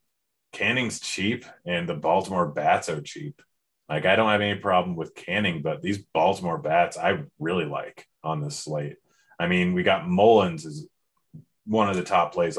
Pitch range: 90-105 Hz